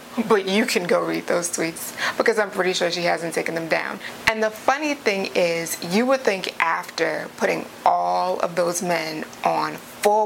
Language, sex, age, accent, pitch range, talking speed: English, female, 20-39, American, 175-220 Hz, 185 wpm